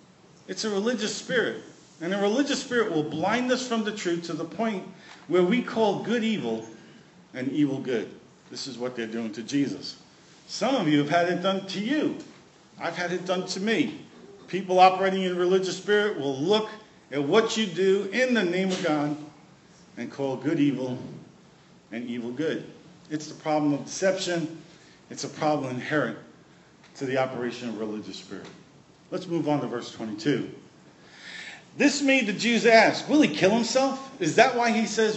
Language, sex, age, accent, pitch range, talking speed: English, male, 50-69, American, 150-215 Hz, 180 wpm